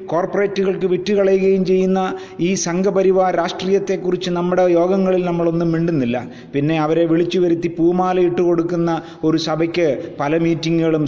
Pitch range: 155-185 Hz